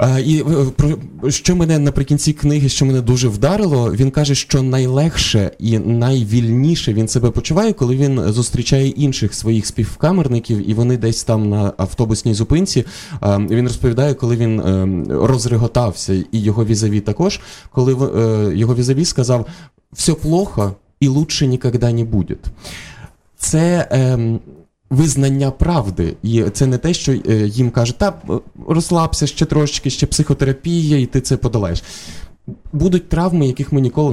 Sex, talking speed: male, 145 wpm